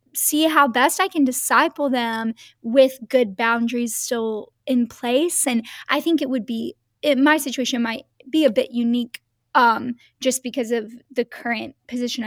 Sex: female